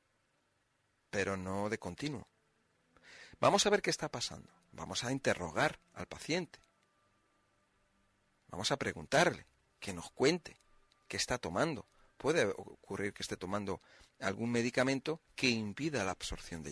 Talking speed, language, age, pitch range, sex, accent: 130 wpm, Spanish, 40-59, 95-130 Hz, male, Spanish